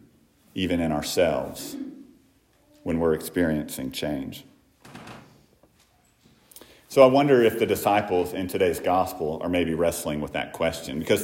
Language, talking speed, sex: English, 125 wpm, male